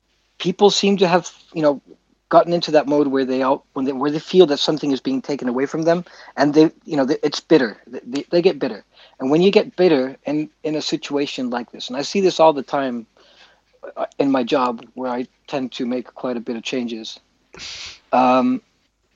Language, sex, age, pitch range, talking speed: English, male, 40-59, 135-170 Hz, 220 wpm